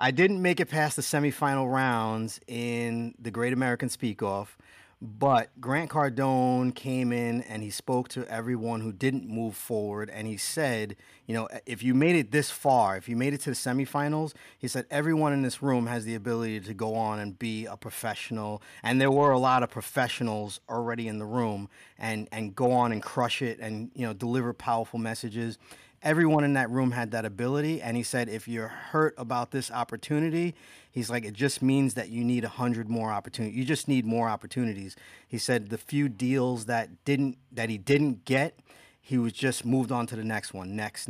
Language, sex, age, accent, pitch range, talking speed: English, male, 30-49, American, 110-130 Hz, 200 wpm